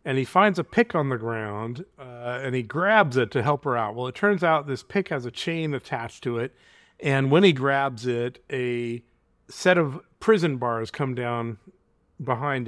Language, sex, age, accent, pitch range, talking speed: English, male, 40-59, American, 125-170 Hz, 200 wpm